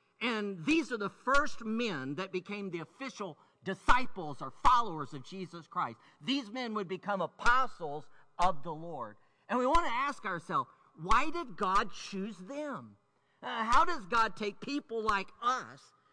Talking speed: 160 wpm